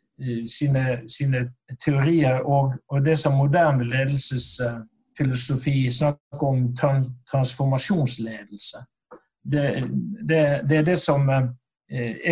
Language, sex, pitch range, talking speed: English, male, 130-170 Hz, 95 wpm